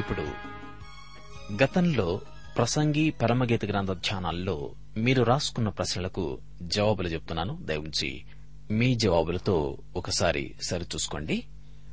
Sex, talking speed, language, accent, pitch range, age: male, 65 wpm, Telugu, native, 90-130 Hz, 30-49